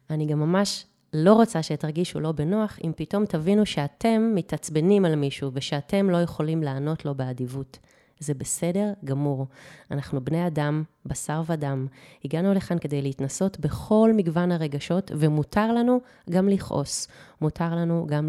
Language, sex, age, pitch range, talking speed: Hebrew, female, 30-49, 150-200 Hz, 140 wpm